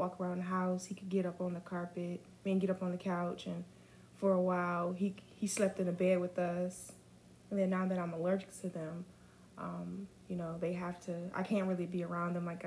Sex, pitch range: female, 170-190 Hz